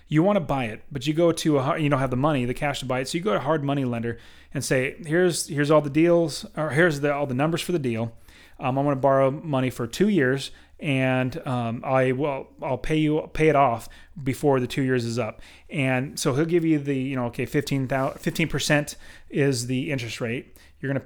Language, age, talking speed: English, 30-49, 240 wpm